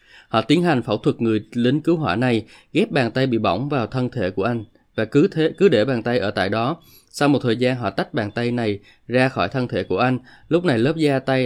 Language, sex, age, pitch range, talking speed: Vietnamese, male, 20-39, 110-130 Hz, 260 wpm